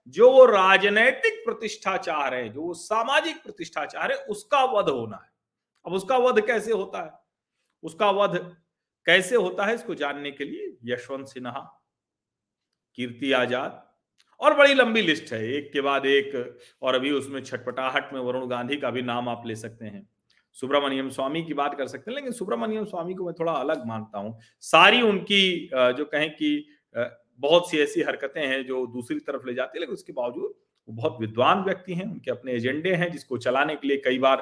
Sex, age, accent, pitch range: male, 40-59, native, 130-205 Hz